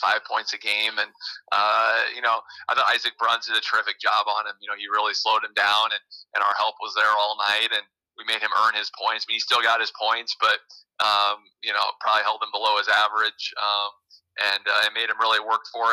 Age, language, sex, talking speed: 30-49, English, male, 250 wpm